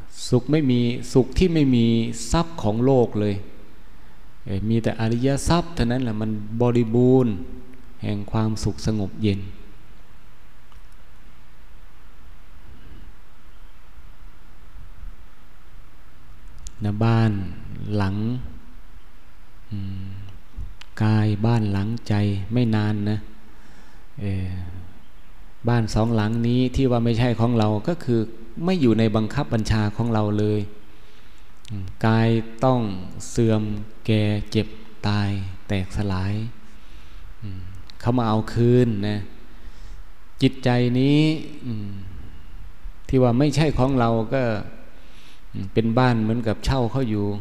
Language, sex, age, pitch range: Thai, male, 20-39, 95-125 Hz